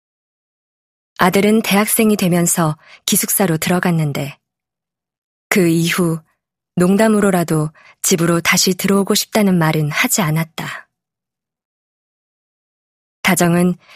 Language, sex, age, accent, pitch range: Korean, female, 20-39, native, 160-195 Hz